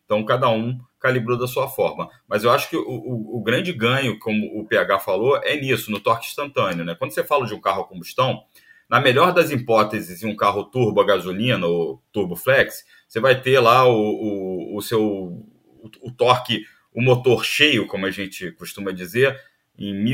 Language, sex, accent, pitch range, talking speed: Portuguese, male, Brazilian, 110-155 Hz, 200 wpm